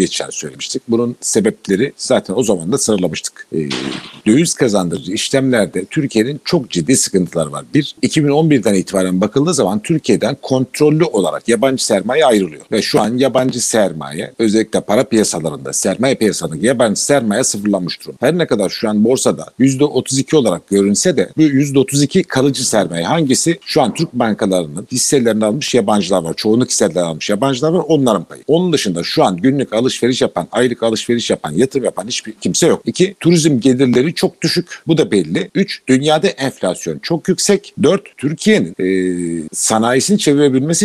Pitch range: 110-160 Hz